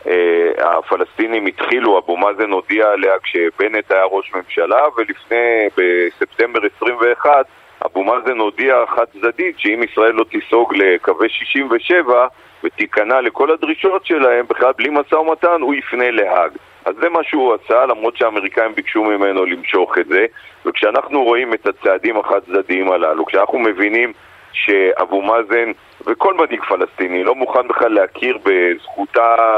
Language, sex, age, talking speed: Hebrew, male, 40-59, 135 wpm